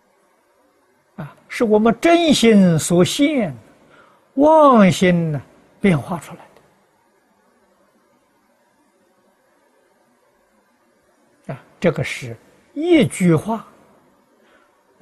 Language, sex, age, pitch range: Chinese, male, 60-79, 135-200 Hz